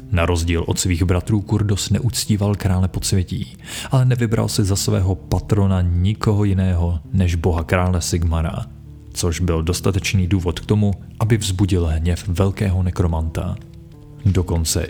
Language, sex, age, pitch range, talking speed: Czech, male, 30-49, 85-100 Hz, 135 wpm